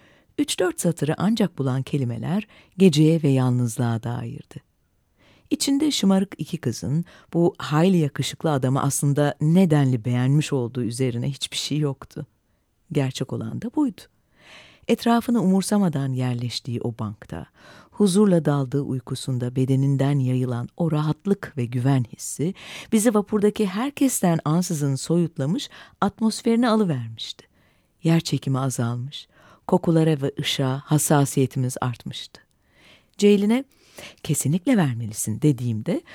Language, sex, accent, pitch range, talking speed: Turkish, female, native, 130-190 Hz, 105 wpm